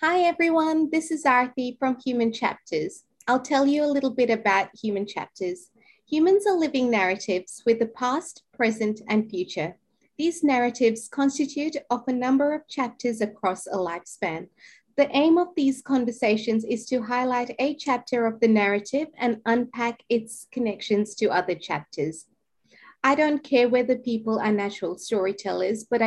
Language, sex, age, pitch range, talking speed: English, female, 30-49, 205-265 Hz, 155 wpm